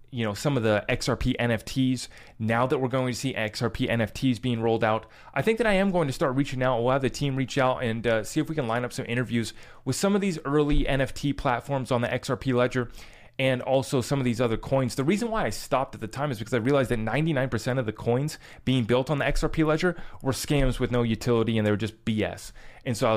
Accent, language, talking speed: American, English, 255 wpm